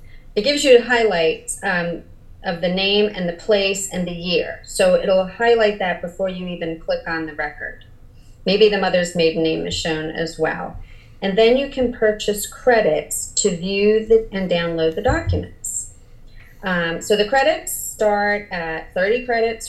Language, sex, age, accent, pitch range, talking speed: English, female, 30-49, American, 160-205 Hz, 170 wpm